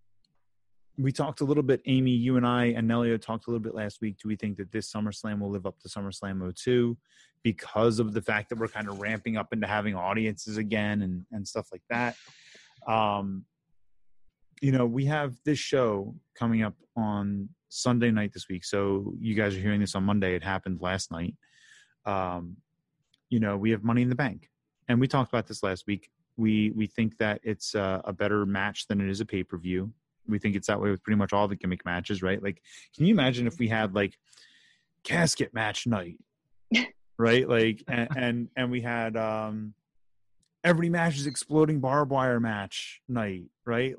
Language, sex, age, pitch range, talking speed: English, male, 30-49, 100-125 Hz, 200 wpm